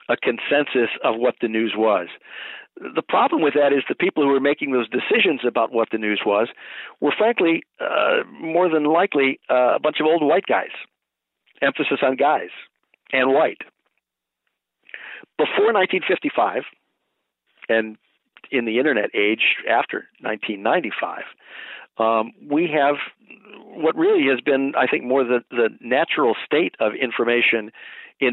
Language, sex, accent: English, male, American